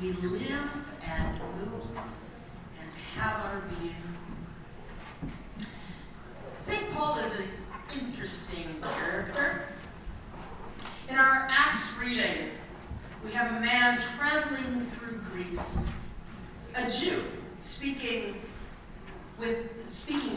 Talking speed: 85 wpm